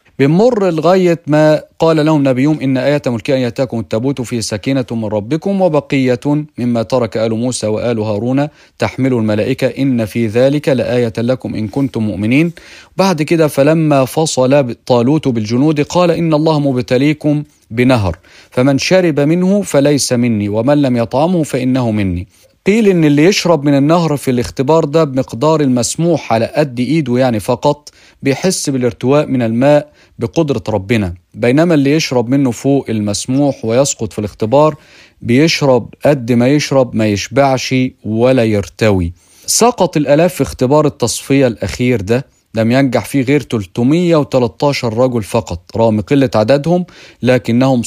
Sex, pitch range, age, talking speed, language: male, 110-145 Hz, 40-59, 140 wpm, Arabic